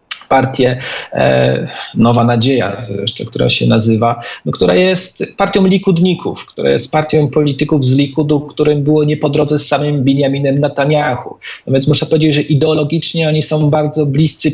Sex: male